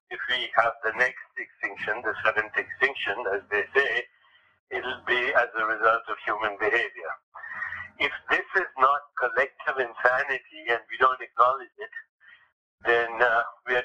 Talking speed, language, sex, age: 150 wpm, English, male, 60-79